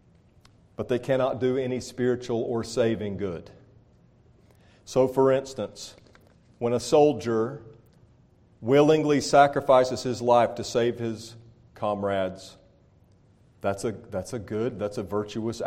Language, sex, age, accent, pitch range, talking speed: English, male, 40-59, American, 110-130 Hz, 115 wpm